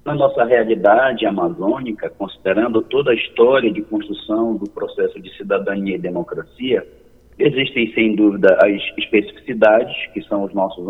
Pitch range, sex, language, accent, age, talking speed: 105-160 Hz, male, Portuguese, Brazilian, 50-69, 140 wpm